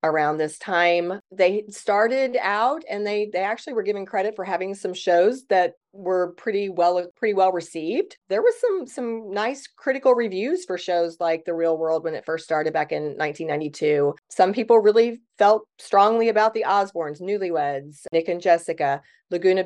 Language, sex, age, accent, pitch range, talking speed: English, female, 30-49, American, 160-205 Hz, 175 wpm